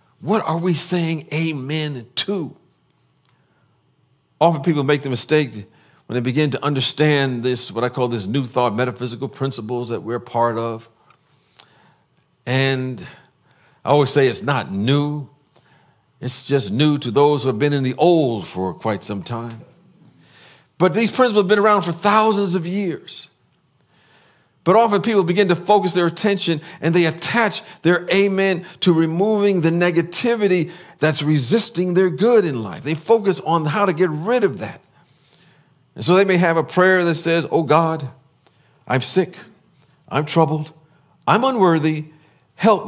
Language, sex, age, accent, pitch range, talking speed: English, male, 50-69, American, 135-180 Hz, 155 wpm